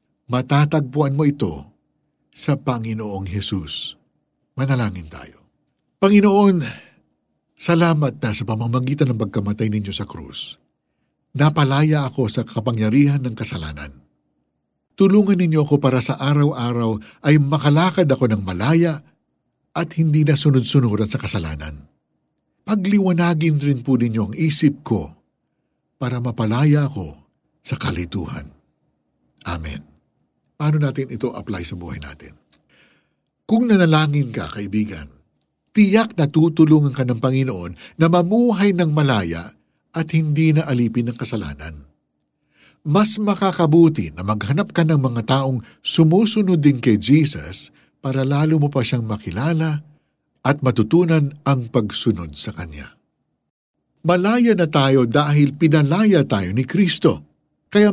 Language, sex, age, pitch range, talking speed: Filipino, male, 50-69, 105-160 Hz, 120 wpm